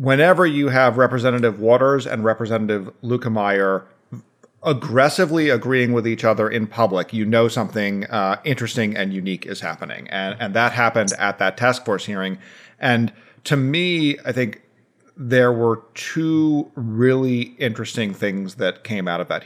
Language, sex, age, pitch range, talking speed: English, male, 40-59, 105-130 Hz, 155 wpm